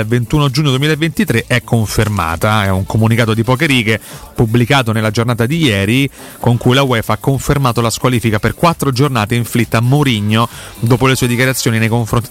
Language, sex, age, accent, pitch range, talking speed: Italian, male, 30-49, native, 110-135 Hz, 175 wpm